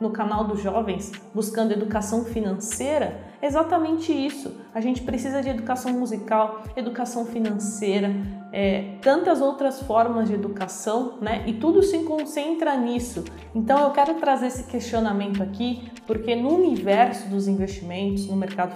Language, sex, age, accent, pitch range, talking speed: Portuguese, female, 20-39, Brazilian, 210-255 Hz, 140 wpm